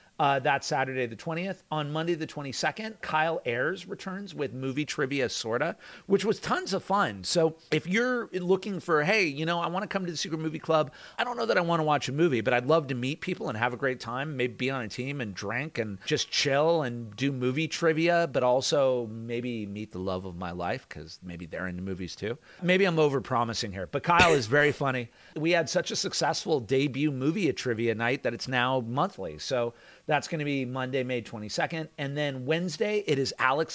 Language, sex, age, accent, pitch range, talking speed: English, male, 40-59, American, 120-160 Hz, 225 wpm